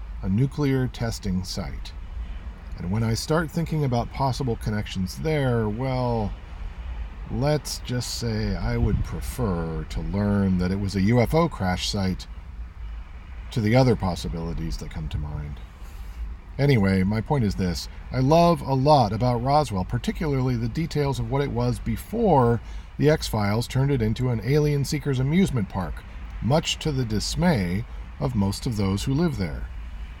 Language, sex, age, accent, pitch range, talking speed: English, male, 40-59, American, 85-140 Hz, 155 wpm